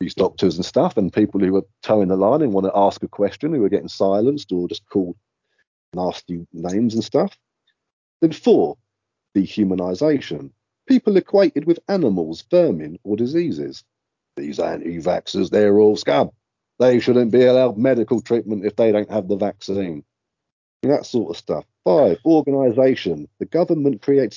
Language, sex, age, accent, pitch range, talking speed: English, male, 40-59, British, 90-140 Hz, 160 wpm